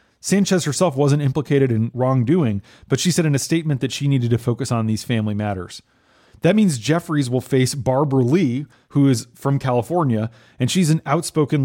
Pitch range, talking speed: 120-150 Hz, 185 wpm